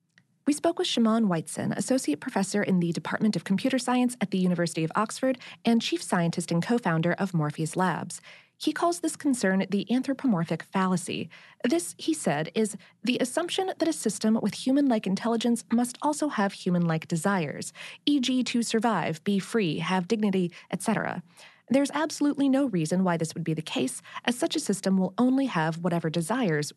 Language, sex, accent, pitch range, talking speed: English, female, American, 175-245 Hz, 175 wpm